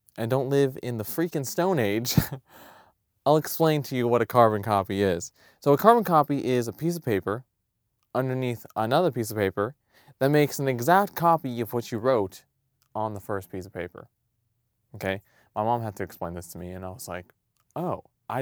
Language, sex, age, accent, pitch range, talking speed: English, male, 20-39, American, 105-140 Hz, 200 wpm